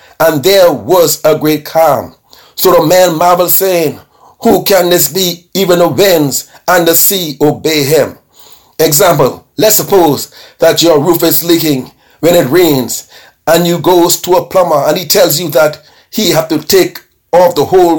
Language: English